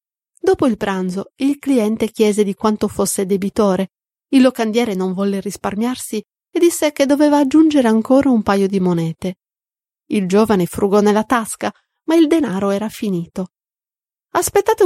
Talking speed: 145 wpm